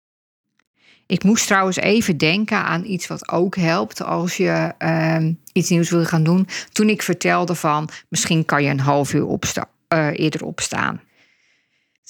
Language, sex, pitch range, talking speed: Dutch, female, 155-190 Hz, 160 wpm